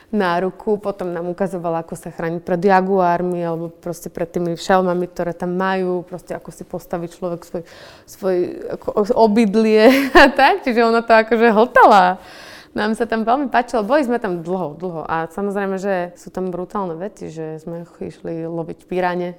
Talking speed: 170 wpm